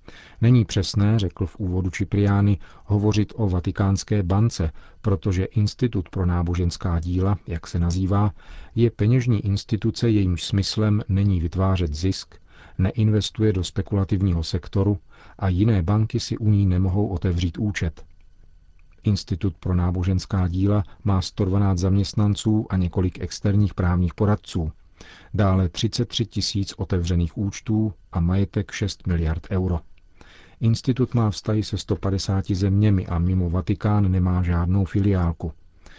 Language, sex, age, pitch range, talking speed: Czech, male, 40-59, 90-105 Hz, 120 wpm